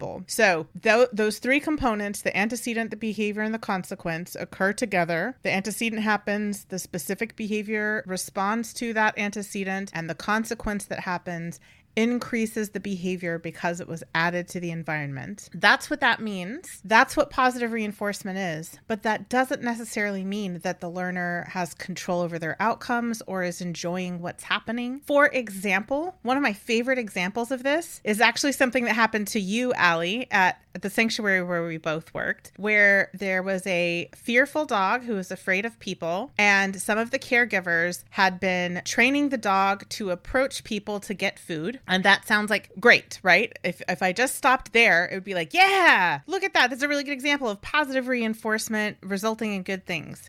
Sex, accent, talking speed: female, American, 180 wpm